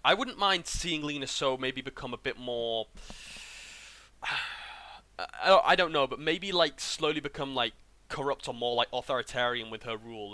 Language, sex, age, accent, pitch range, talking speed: English, male, 10-29, British, 110-135 Hz, 165 wpm